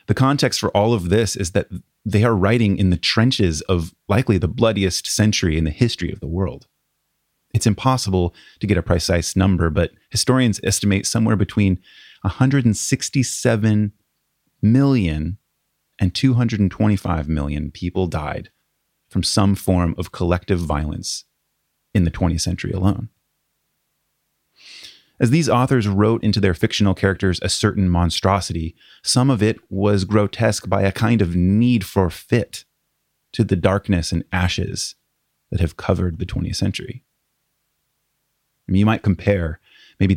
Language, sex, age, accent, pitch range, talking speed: English, male, 30-49, American, 90-110 Hz, 140 wpm